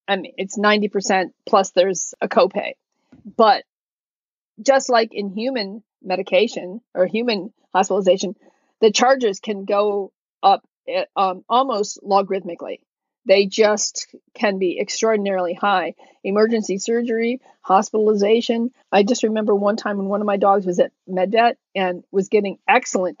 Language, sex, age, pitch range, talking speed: English, female, 40-59, 190-245 Hz, 130 wpm